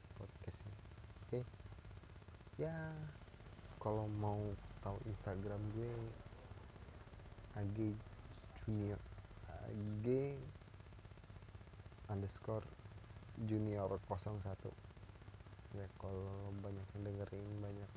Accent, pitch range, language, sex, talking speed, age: native, 100-110 Hz, Indonesian, male, 65 wpm, 20-39